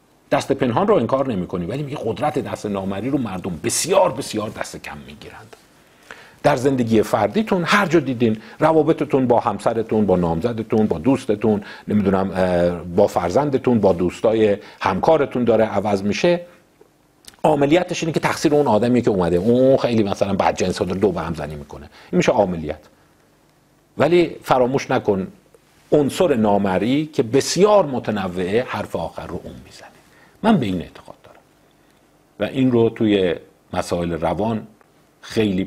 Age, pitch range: 50-69, 100-150 Hz